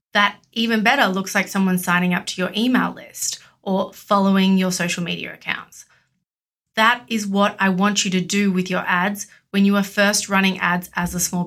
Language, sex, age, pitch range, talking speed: English, female, 30-49, 185-215 Hz, 200 wpm